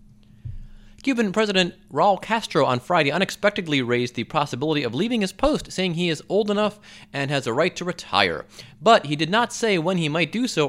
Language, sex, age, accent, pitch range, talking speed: English, male, 30-49, American, 120-200 Hz, 195 wpm